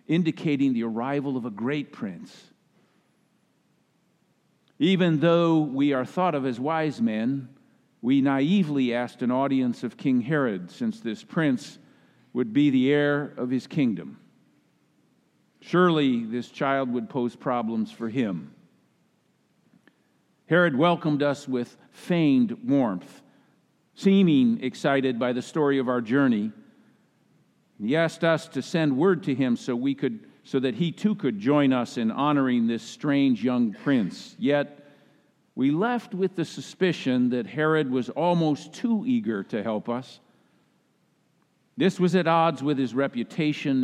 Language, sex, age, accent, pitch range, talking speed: English, male, 50-69, American, 130-170 Hz, 135 wpm